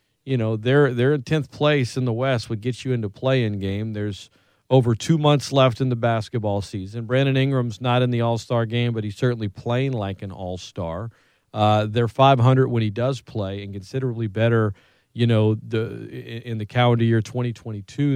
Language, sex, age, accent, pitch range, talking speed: English, male, 40-59, American, 110-135 Hz, 190 wpm